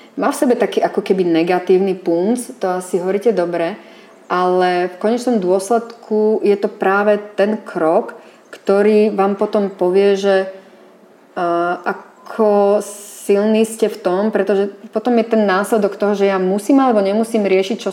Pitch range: 180-210 Hz